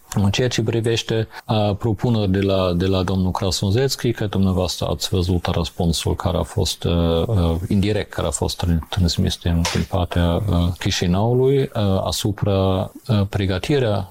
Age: 50-69